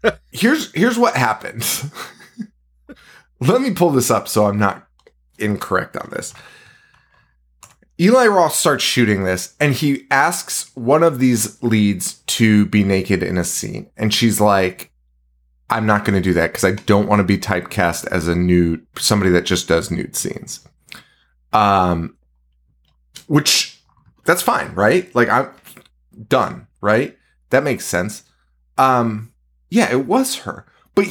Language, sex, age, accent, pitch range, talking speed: English, male, 30-49, American, 85-130 Hz, 145 wpm